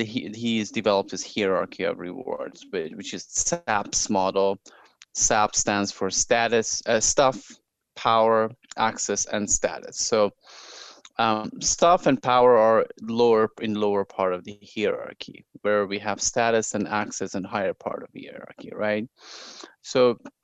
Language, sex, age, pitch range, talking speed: English, male, 20-39, 100-115 Hz, 145 wpm